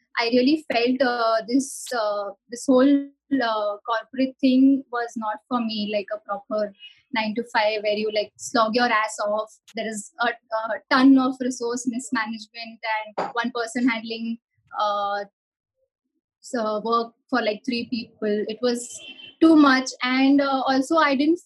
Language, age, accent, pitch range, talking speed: English, 20-39, Indian, 225-270 Hz, 150 wpm